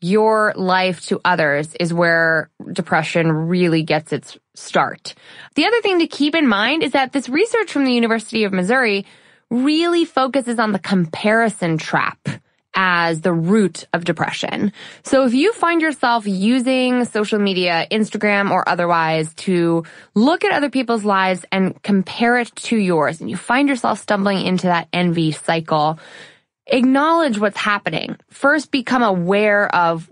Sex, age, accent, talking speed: female, 20-39, American, 150 wpm